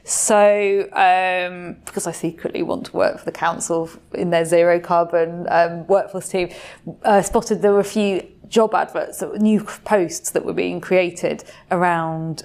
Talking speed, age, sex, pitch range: 175 wpm, 20-39, female, 170-200 Hz